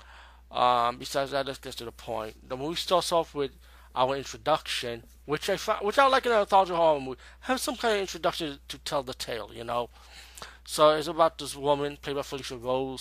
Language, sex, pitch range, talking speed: English, male, 115-145 Hz, 215 wpm